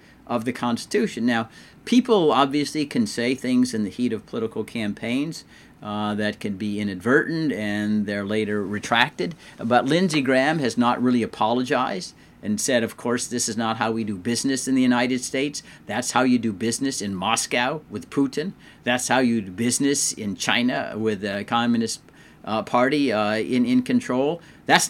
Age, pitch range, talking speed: 50-69, 110-140 Hz, 175 wpm